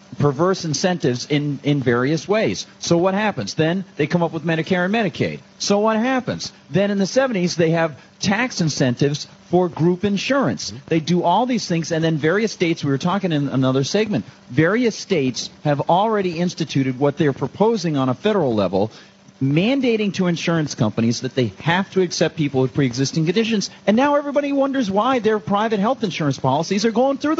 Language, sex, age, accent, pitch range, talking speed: English, male, 40-59, American, 145-205 Hz, 185 wpm